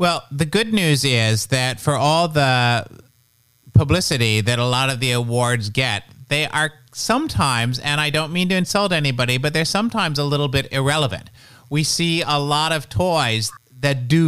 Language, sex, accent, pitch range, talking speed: English, male, American, 125-170 Hz, 175 wpm